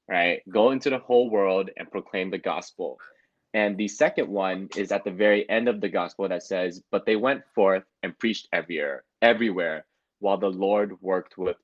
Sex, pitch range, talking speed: male, 95-115 Hz, 190 wpm